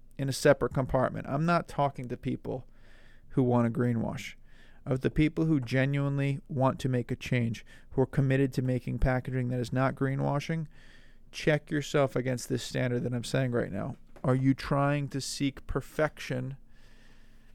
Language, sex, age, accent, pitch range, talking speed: English, male, 40-59, American, 120-140 Hz, 170 wpm